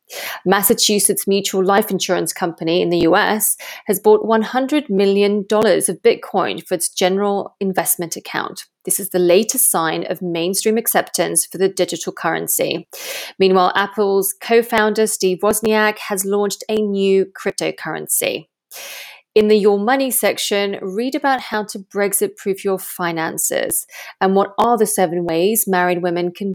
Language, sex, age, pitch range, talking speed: English, female, 30-49, 180-215 Hz, 140 wpm